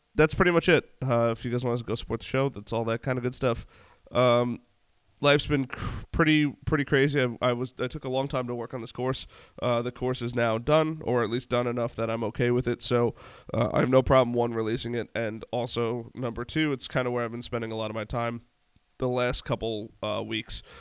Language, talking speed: English, 250 wpm